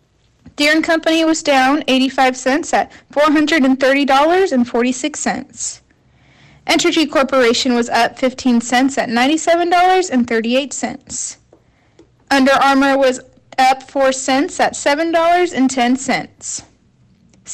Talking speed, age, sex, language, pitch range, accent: 85 wpm, 10-29, female, English, 260-315 Hz, American